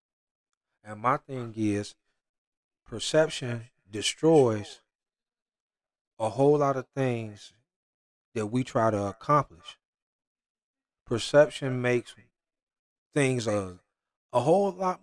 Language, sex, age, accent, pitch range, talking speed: English, male, 40-59, American, 115-145 Hz, 90 wpm